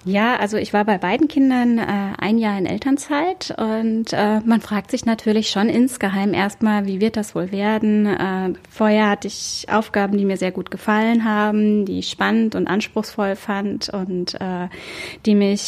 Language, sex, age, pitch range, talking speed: German, female, 20-39, 200-225 Hz, 180 wpm